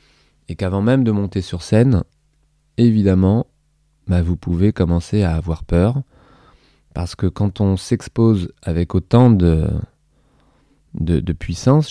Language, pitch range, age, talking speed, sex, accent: French, 85-120 Hz, 20-39, 130 wpm, male, French